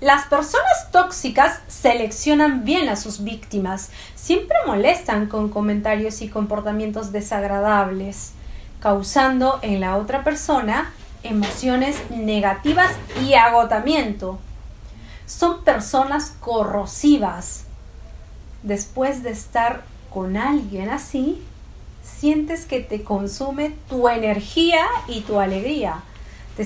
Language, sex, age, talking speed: Spanish, female, 30-49, 95 wpm